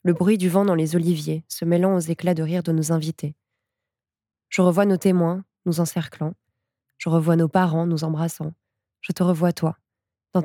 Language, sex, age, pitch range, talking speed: French, female, 20-39, 155-195 Hz, 190 wpm